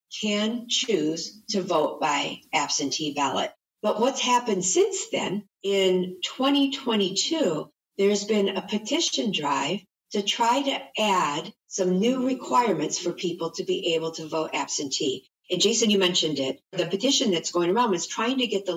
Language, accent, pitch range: English, American, 170-225 Hz